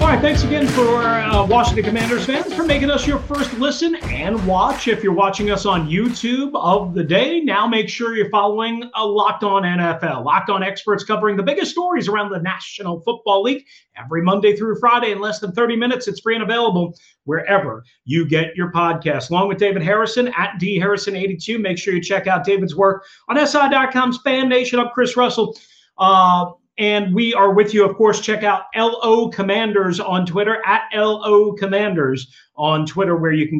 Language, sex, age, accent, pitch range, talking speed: English, male, 40-59, American, 175-225 Hz, 195 wpm